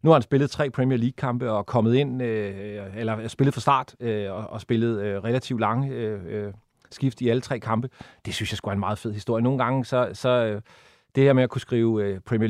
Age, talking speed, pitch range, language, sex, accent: 30-49, 205 wpm, 115-130 Hz, Danish, male, native